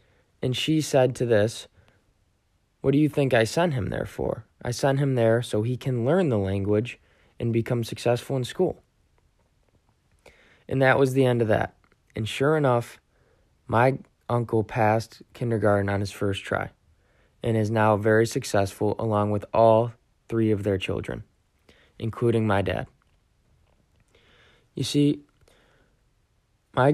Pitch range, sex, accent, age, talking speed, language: 100-120 Hz, male, American, 20-39, 145 wpm, English